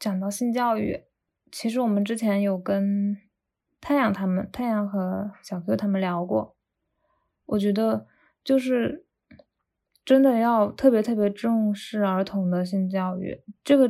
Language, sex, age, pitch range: Chinese, female, 10-29, 190-235 Hz